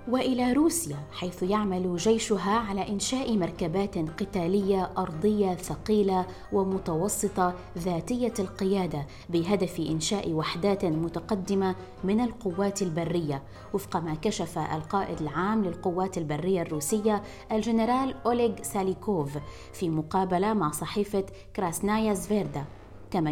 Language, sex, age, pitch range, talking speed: Arabic, female, 20-39, 170-215 Hz, 100 wpm